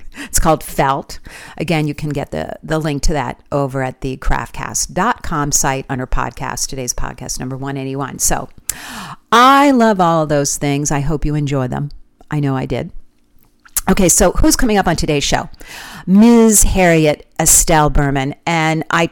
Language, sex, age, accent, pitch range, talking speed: English, female, 50-69, American, 130-175 Hz, 165 wpm